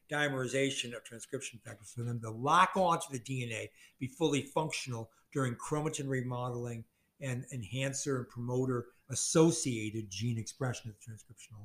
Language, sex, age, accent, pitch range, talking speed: English, male, 60-79, American, 125-155 Hz, 140 wpm